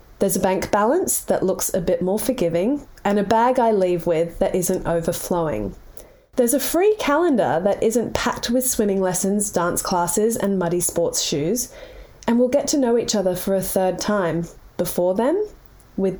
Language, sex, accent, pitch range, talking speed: English, female, Australian, 180-245 Hz, 180 wpm